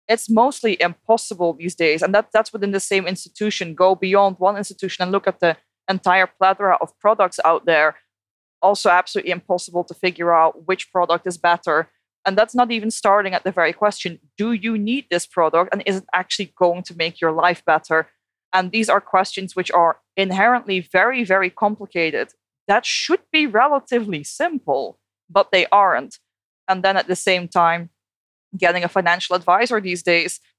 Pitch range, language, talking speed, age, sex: 170-200 Hz, English, 175 wpm, 20-39, female